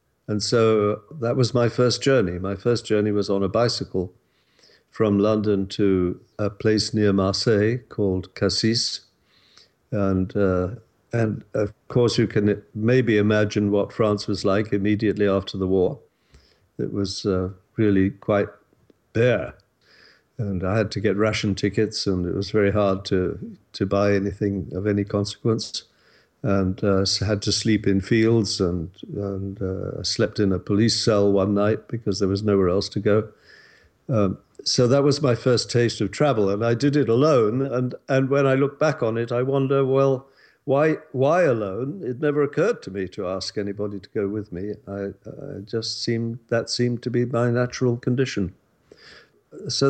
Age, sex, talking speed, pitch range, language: 50-69, male, 170 wpm, 100-120 Hz, English